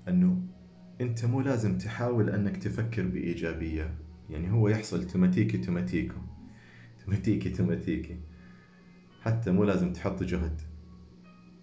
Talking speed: 105 wpm